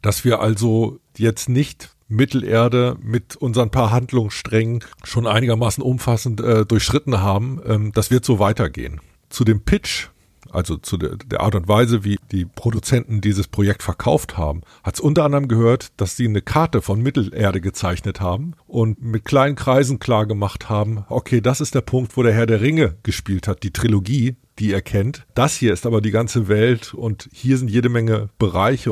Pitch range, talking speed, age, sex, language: 100-125 Hz, 185 wpm, 50-69, male, German